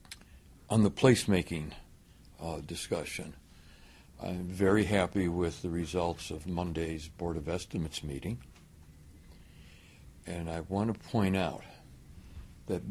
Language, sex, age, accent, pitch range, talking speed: English, male, 60-79, American, 75-95 Hz, 105 wpm